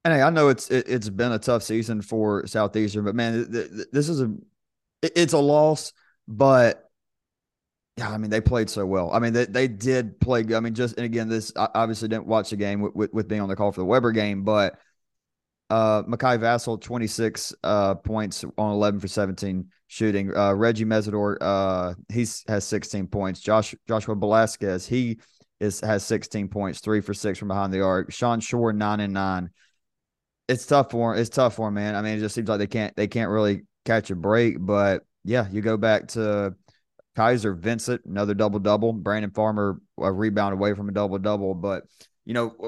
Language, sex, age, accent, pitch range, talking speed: English, male, 30-49, American, 100-115 Hz, 210 wpm